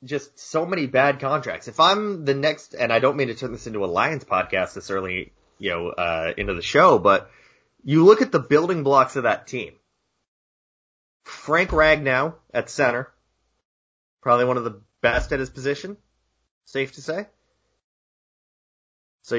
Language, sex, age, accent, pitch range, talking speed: English, male, 30-49, American, 110-145 Hz, 165 wpm